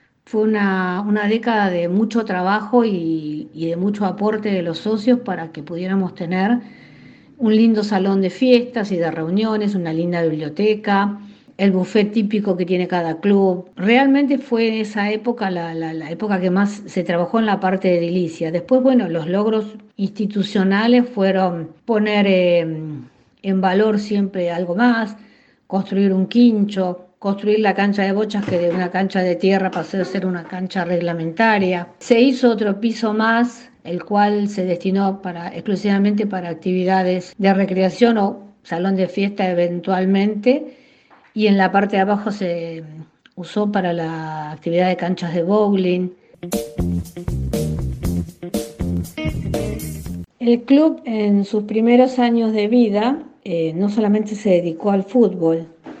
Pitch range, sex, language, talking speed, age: 175-215 Hz, female, Spanish, 145 wpm, 50-69